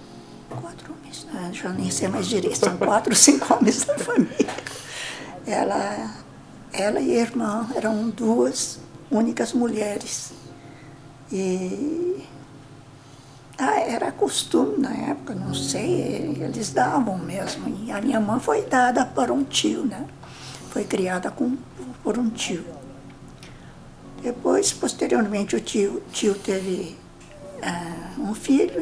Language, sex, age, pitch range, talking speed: Portuguese, female, 60-79, 150-250 Hz, 125 wpm